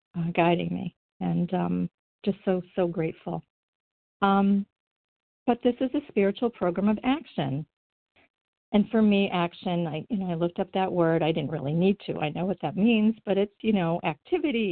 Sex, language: female, English